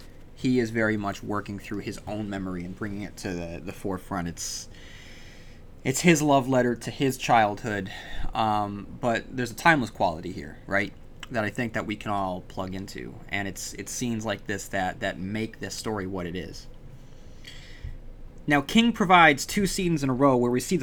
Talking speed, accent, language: 190 wpm, American, English